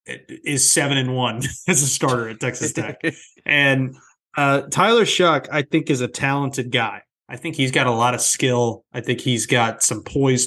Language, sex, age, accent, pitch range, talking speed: English, male, 20-39, American, 125-150 Hz, 195 wpm